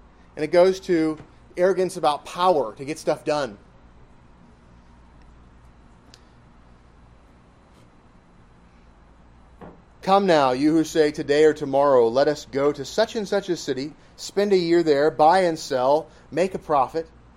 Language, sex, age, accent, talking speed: English, male, 30-49, American, 130 wpm